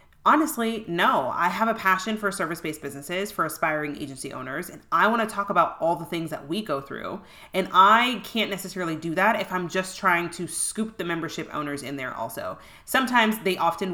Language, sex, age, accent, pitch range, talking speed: English, female, 30-49, American, 160-215 Hz, 200 wpm